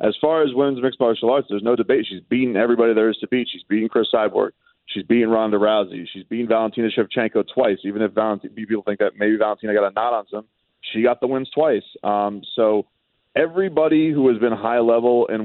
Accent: American